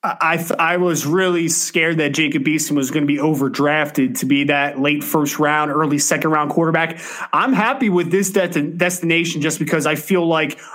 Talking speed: 195 wpm